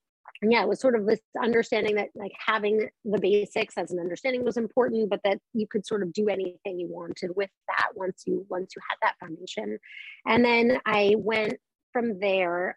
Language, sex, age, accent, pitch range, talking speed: English, female, 30-49, American, 185-225 Hz, 200 wpm